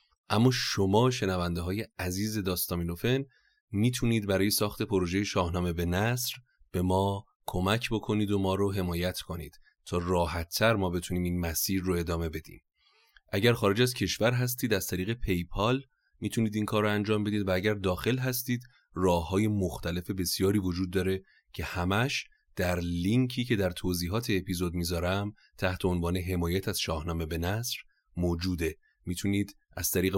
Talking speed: 150 wpm